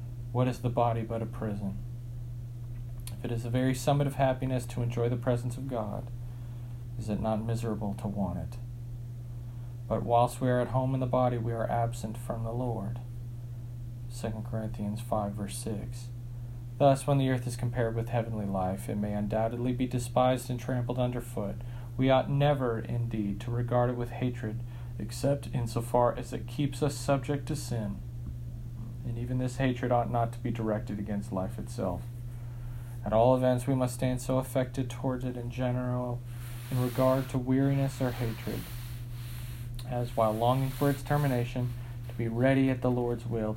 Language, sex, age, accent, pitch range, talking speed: English, male, 40-59, American, 115-125 Hz, 175 wpm